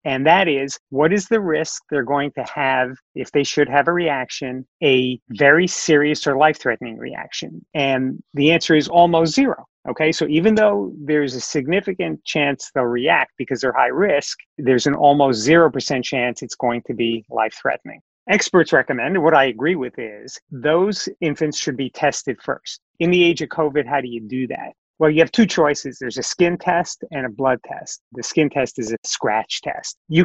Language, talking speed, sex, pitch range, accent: English, 195 wpm, male, 125-160 Hz, American